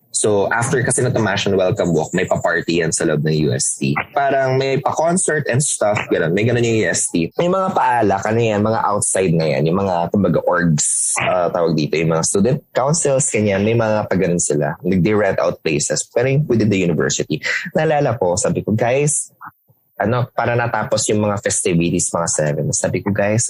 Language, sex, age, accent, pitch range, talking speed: English, male, 20-39, Filipino, 100-165 Hz, 185 wpm